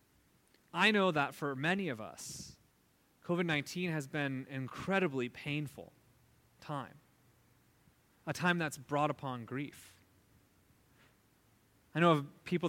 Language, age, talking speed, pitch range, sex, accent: English, 30-49, 115 wpm, 130-170 Hz, male, American